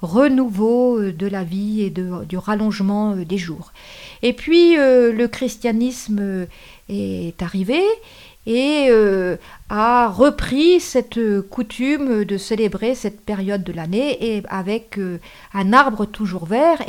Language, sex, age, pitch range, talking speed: French, female, 50-69, 200-250 Hz, 125 wpm